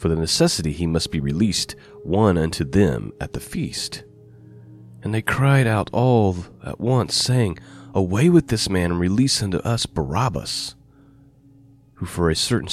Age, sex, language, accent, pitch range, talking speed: 30-49, male, English, American, 80-130 Hz, 160 wpm